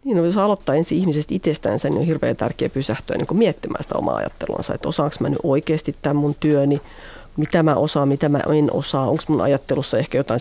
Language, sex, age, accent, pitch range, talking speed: Finnish, female, 40-59, native, 140-170 Hz, 195 wpm